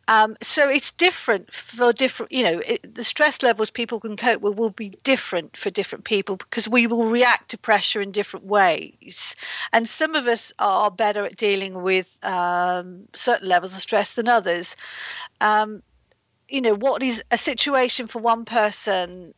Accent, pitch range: British, 195-240 Hz